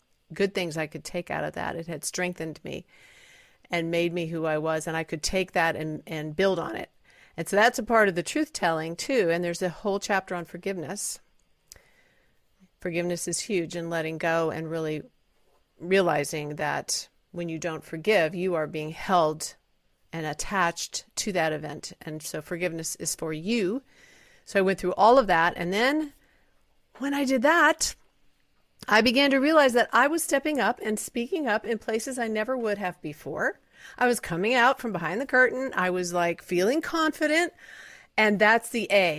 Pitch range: 165-235 Hz